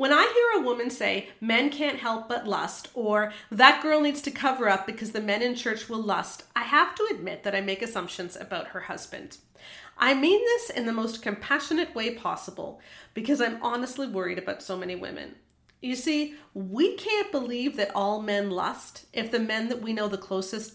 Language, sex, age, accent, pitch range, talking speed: English, female, 40-59, American, 205-280 Hz, 200 wpm